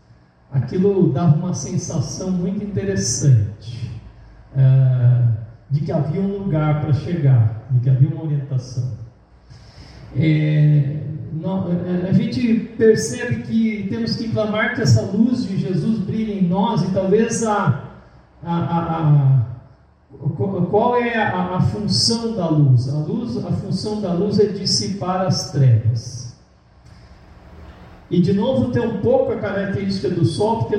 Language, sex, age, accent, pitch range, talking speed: Portuguese, male, 50-69, Brazilian, 135-195 Hz, 130 wpm